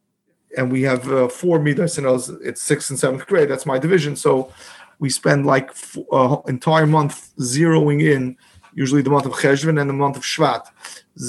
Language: English